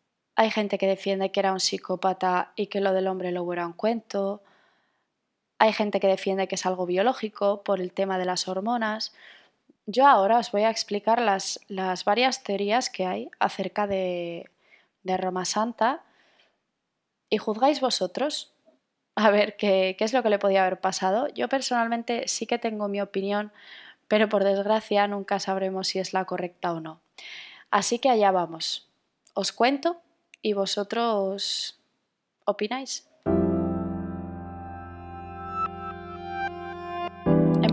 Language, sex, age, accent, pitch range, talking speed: Spanish, female, 20-39, Spanish, 185-225 Hz, 145 wpm